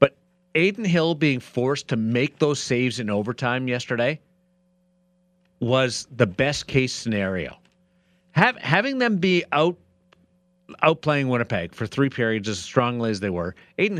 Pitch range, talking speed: 125-180 Hz, 135 wpm